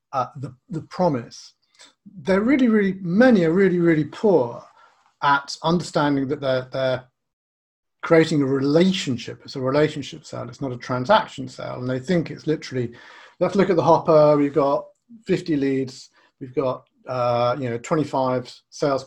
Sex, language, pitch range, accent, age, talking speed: male, English, 130-180 Hz, British, 40-59, 155 wpm